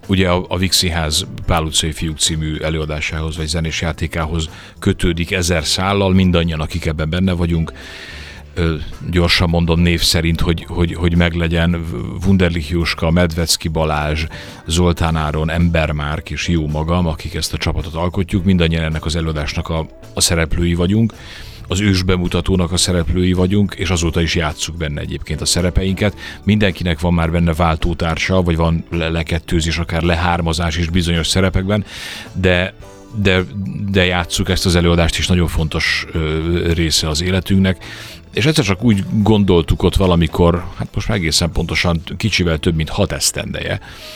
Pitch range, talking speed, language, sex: 80-95 Hz, 150 wpm, Hungarian, male